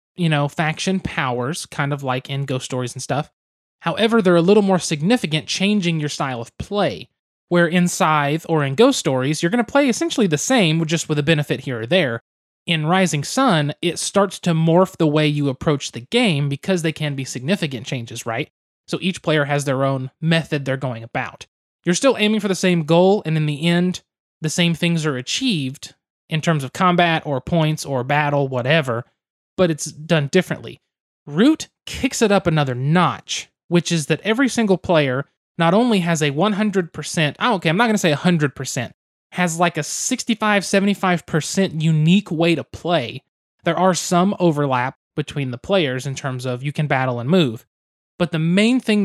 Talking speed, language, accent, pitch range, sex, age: 190 wpm, English, American, 145-180 Hz, male, 20-39